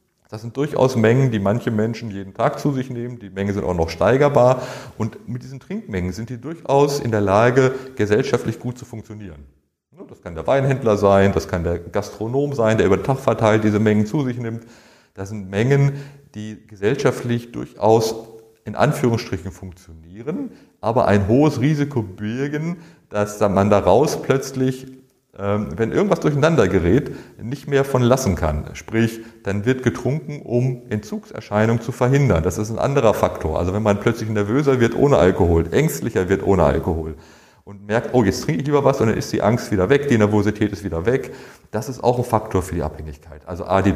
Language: German